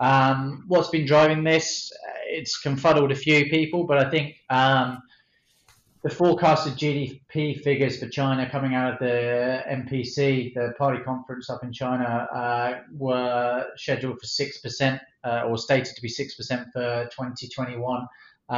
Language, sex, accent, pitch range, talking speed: English, male, British, 115-135 Hz, 150 wpm